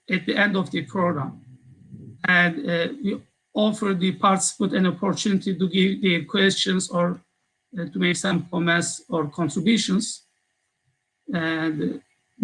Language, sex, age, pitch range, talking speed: Turkish, male, 50-69, 175-210 Hz, 135 wpm